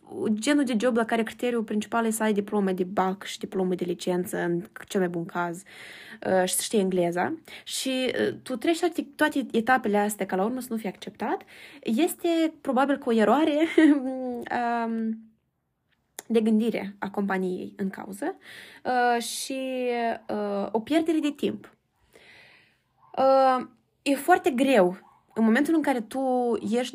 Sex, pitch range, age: female, 200-270 Hz, 20-39